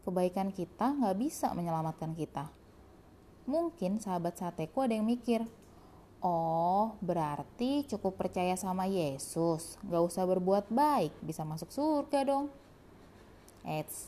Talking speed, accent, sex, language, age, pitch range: 115 wpm, native, female, Indonesian, 20-39, 170-245 Hz